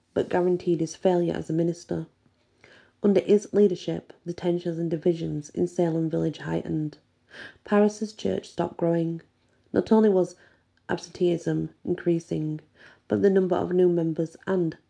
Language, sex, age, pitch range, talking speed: English, female, 40-59, 150-175 Hz, 135 wpm